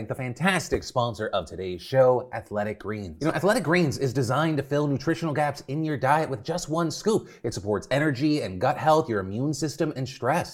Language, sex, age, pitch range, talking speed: English, male, 30-49, 115-155 Hz, 205 wpm